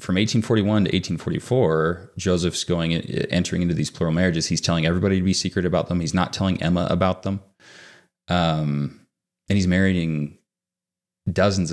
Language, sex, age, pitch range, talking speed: English, male, 30-49, 80-95 Hz, 155 wpm